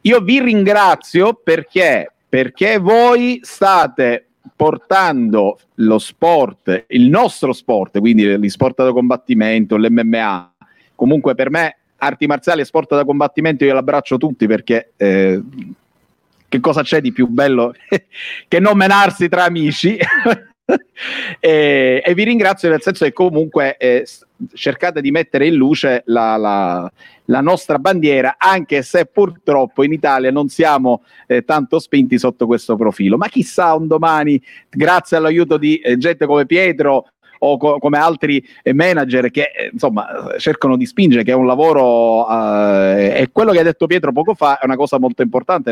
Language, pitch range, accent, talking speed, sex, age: Italian, 125-175 Hz, native, 145 wpm, male, 50-69